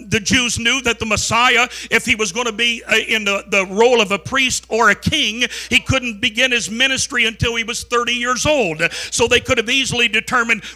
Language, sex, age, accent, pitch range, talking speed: English, male, 50-69, American, 225-255 Hz, 220 wpm